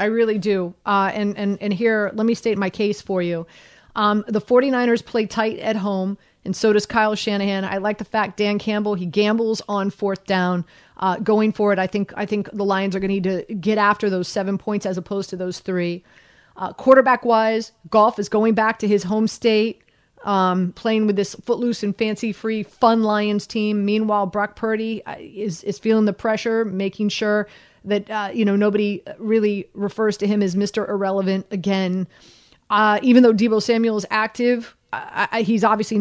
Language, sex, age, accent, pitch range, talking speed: English, female, 30-49, American, 200-220 Hz, 195 wpm